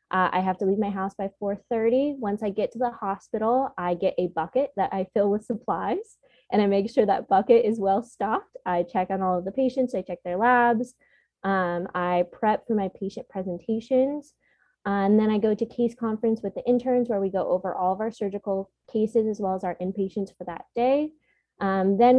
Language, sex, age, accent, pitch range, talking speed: English, female, 20-39, American, 190-230 Hz, 215 wpm